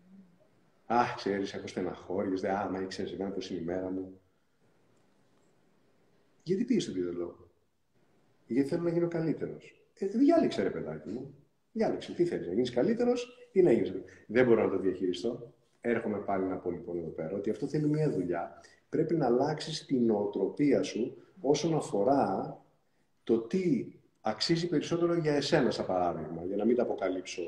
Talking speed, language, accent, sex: 165 wpm, Greek, native, male